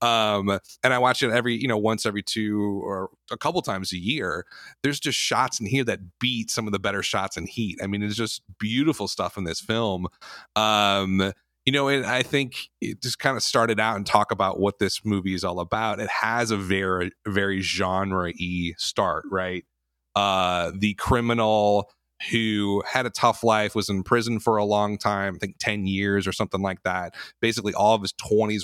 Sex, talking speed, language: male, 205 wpm, English